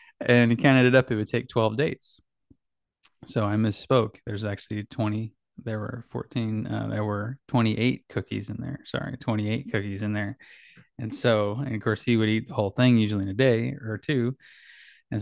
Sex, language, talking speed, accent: male, English, 195 wpm, American